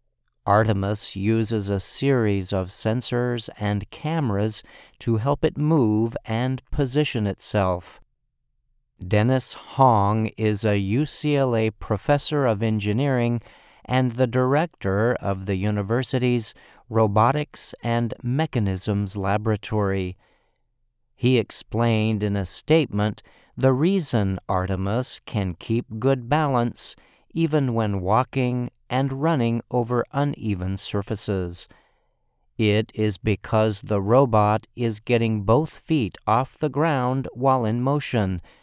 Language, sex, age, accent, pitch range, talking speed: English, male, 50-69, American, 105-130 Hz, 105 wpm